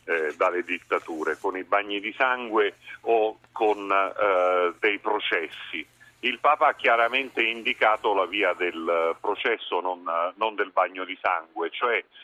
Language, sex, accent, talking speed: Italian, male, native, 140 wpm